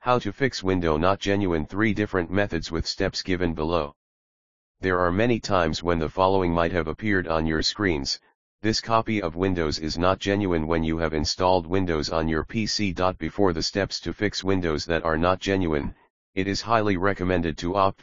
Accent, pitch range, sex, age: American, 80-100 Hz, male, 40-59